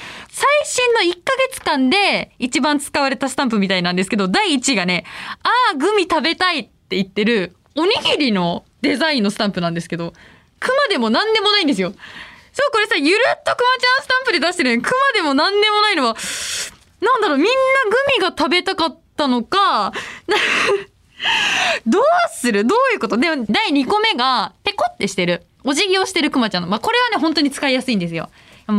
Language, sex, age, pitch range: Japanese, female, 20-39, 225-380 Hz